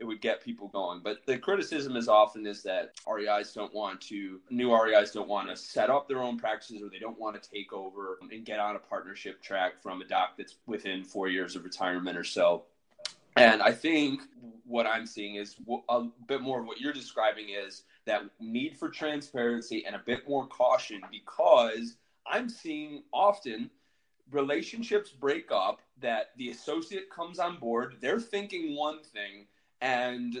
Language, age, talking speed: English, 20-39, 180 wpm